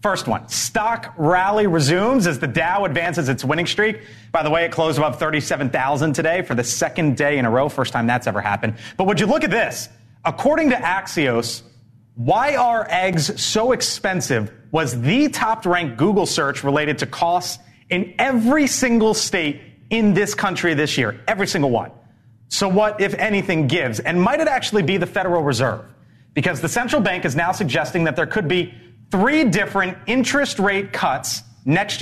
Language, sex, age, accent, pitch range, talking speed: English, male, 30-49, American, 120-180 Hz, 180 wpm